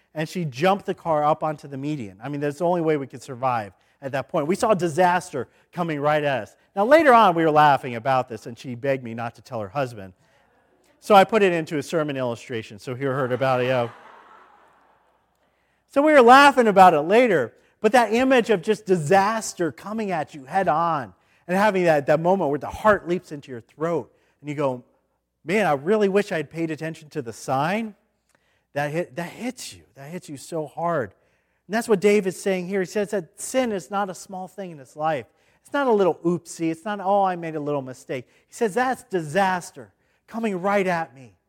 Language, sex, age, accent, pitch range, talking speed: English, male, 40-59, American, 135-195 Hz, 220 wpm